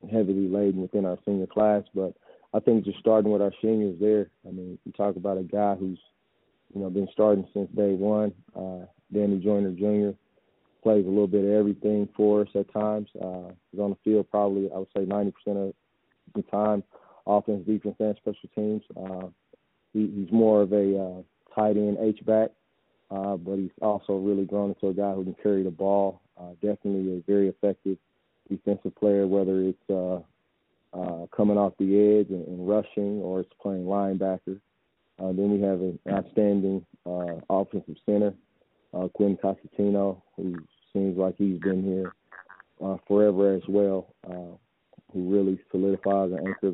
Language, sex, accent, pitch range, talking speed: English, male, American, 95-105 Hz, 170 wpm